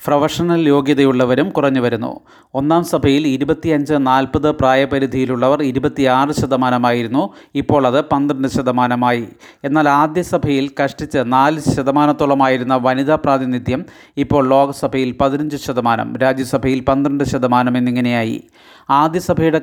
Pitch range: 130-150 Hz